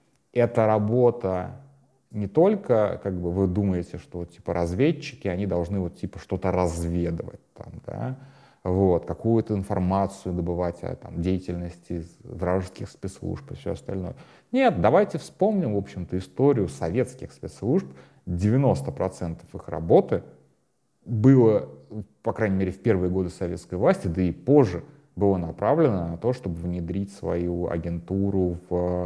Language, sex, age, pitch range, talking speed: Russian, male, 30-49, 85-110 Hz, 110 wpm